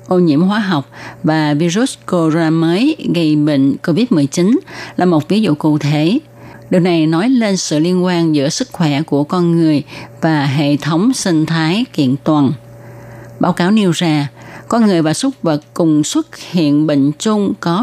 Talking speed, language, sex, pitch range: 175 wpm, Vietnamese, female, 150-190 Hz